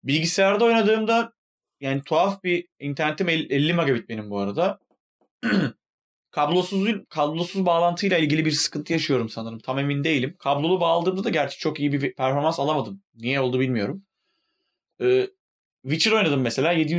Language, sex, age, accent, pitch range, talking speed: Turkish, male, 30-49, native, 125-170 Hz, 135 wpm